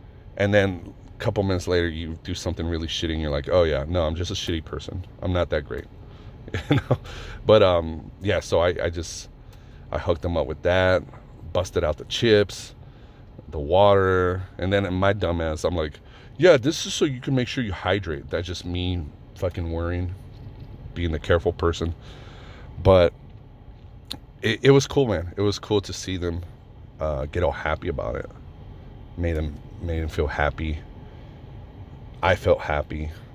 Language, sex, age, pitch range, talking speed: English, male, 30-49, 85-110 Hz, 180 wpm